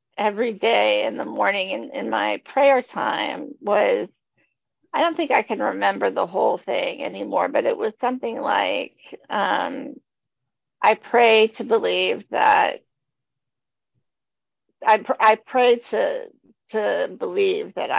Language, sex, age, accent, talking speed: English, female, 50-69, American, 135 wpm